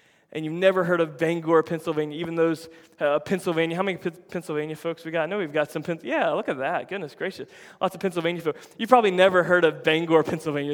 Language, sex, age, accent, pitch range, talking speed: English, male, 20-39, American, 150-175 Hz, 220 wpm